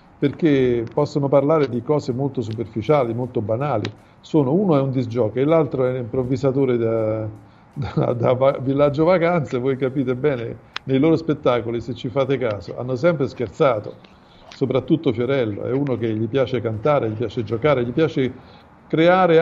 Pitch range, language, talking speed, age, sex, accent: 120-150 Hz, Italian, 160 wpm, 50-69, male, native